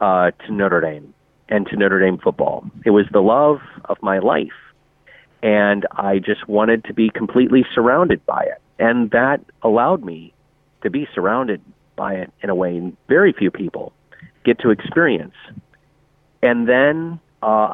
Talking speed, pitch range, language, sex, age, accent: 160 wpm, 105-140 Hz, English, male, 30-49, American